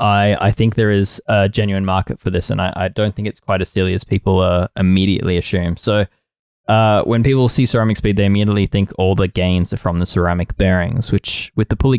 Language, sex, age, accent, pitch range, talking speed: English, male, 20-39, Australian, 95-110 Hz, 230 wpm